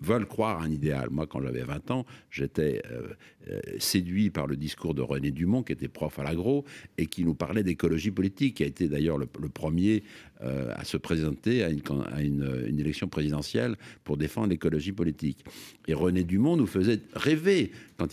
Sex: male